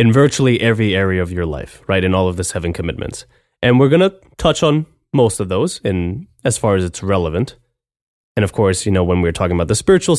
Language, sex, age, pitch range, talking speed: English, male, 20-39, 95-130 Hz, 235 wpm